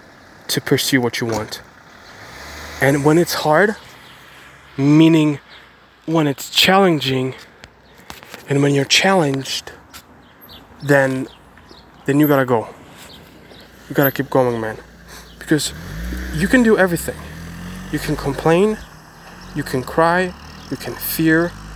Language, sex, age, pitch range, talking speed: English, male, 20-39, 120-160 Hz, 115 wpm